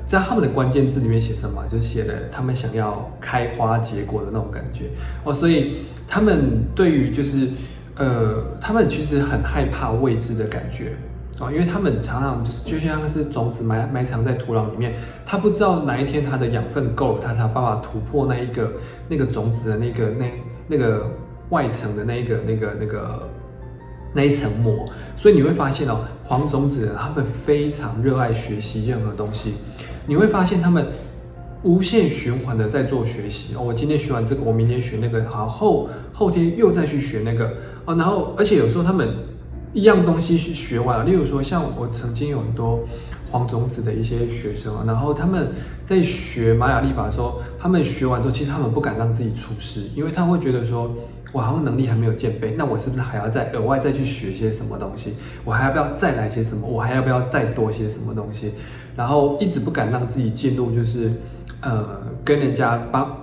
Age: 20-39